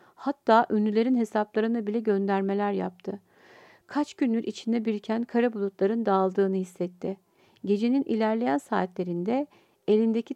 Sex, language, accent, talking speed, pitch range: female, Turkish, native, 105 wpm, 195-245 Hz